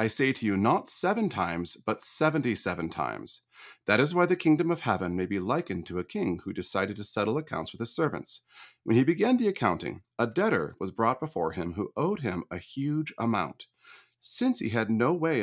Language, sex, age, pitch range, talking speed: English, male, 40-59, 95-140 Hz, 205 wpm